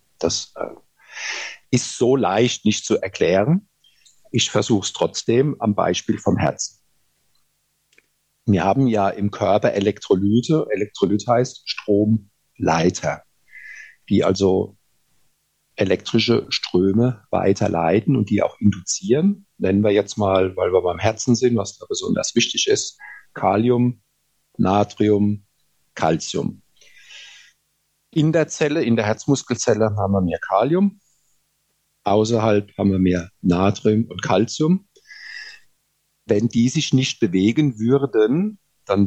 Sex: male